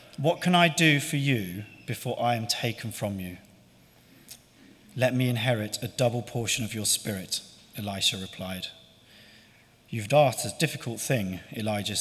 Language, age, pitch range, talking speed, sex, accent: English, 40-59, 105-135 Hz, 145 wpm, male, British